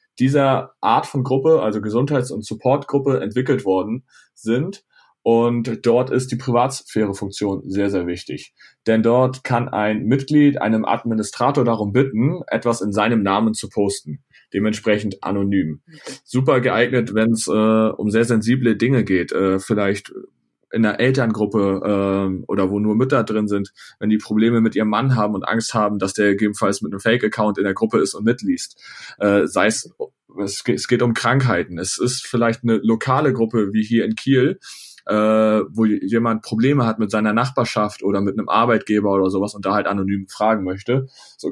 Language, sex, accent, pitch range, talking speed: German, male, German, 105-125 Hz, 170 wpm